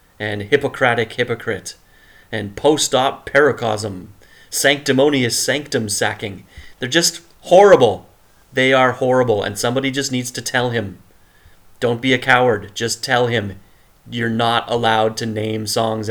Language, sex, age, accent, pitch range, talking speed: English, male, 30-49, American, 105-125 Hz, 130 wpm